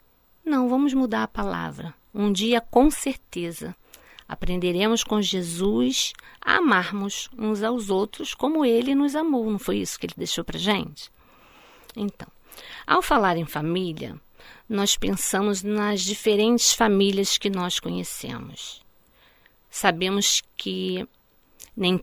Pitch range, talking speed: 175-220 Hz, 125 wpm